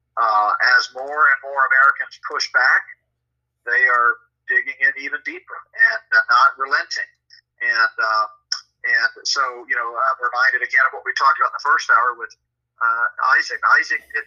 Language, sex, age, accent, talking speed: English, male, 50-69, American, 170 wpm